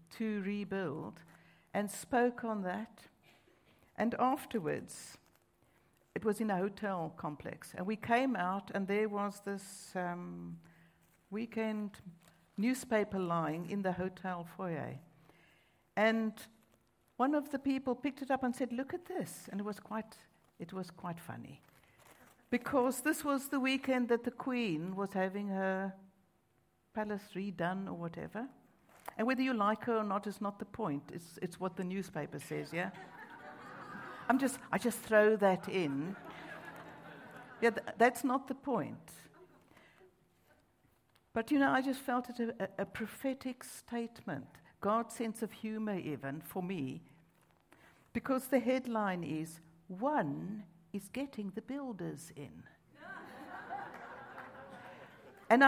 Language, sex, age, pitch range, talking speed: English, female, 60-79, 185-245 Hz, 135 wpm